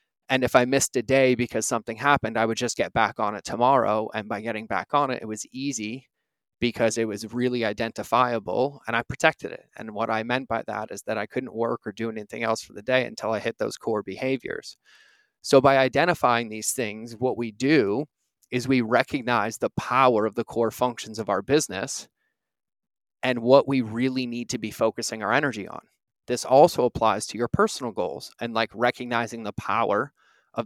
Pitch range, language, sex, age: 115-130 Hz, English, male, 30-49